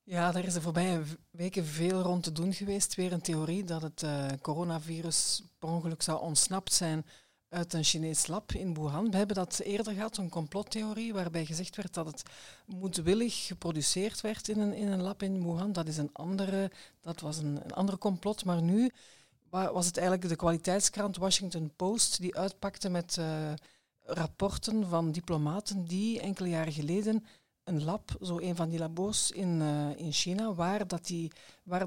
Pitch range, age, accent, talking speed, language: 165-200 Hz, 50-69, Dutch, 170 wpm, Dutch